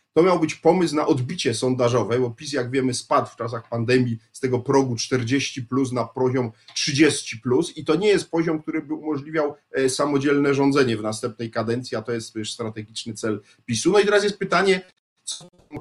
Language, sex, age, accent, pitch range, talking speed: Polish, male, 40-59, native, 120-155 Hz, 195 wpm